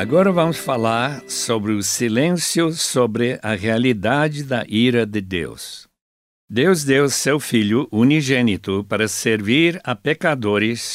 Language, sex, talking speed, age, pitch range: Portuguese, male, 120 wpm, 60-79, 110-145 Hz